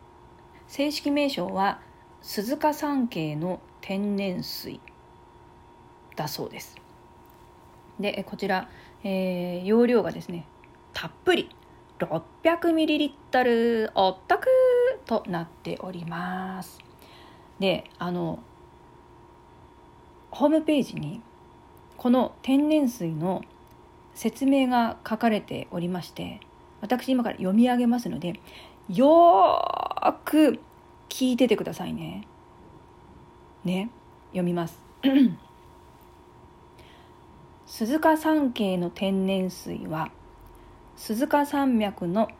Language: Japanese